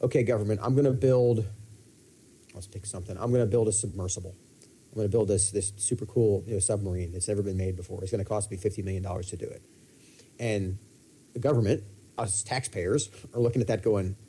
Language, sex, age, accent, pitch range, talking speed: English, male, 30-49, American, 100-125 Hz, 220 wpm